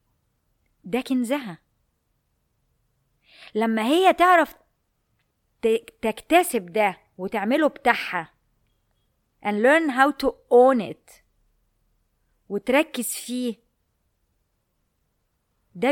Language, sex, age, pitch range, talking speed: Arabic, female, 20-39, 205-270 Hz, 70 wpm